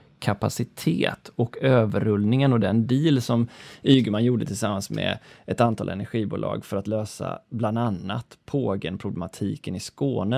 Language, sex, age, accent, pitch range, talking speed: Swedish, male, 20-39, native, 105-135 Hz, 135 wpm